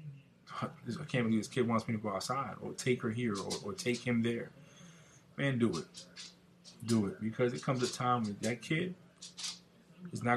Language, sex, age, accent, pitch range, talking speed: English, male, 20-39, American, 115-165 Hz, 195 wpm